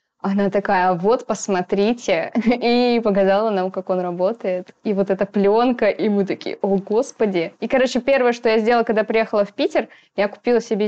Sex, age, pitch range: female, 20-39, 200-245 Hz